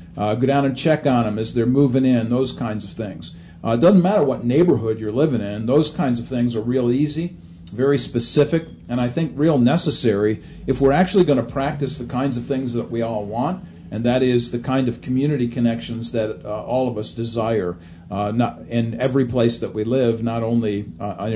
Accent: American